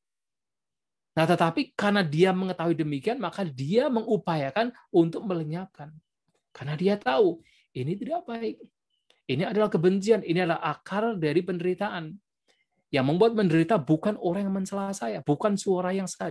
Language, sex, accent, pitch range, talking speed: Indonesian, male, native, 160-210 Hz, 135 wpm